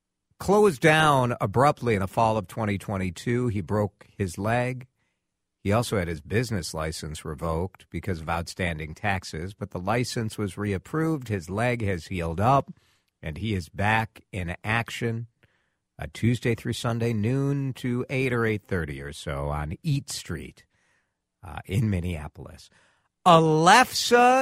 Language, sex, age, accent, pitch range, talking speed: English, male, 50-69, American, 95-130 Hz, 145 wpm